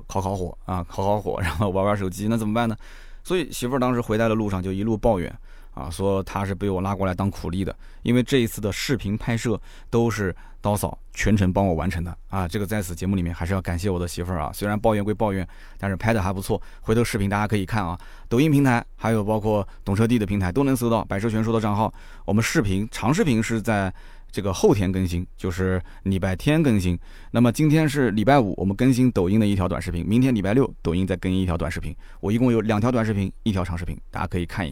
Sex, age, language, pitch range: male, 20-39, Chinese, 95-115 Hz